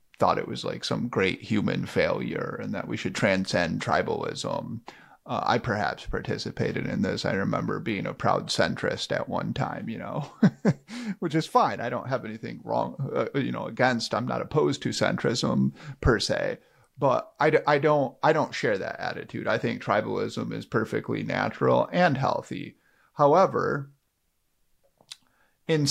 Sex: male